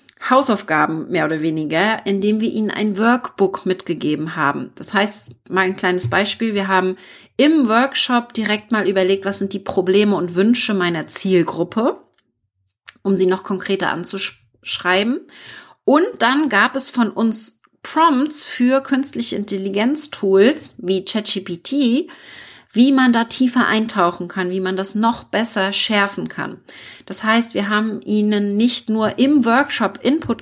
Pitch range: 190-240 Hz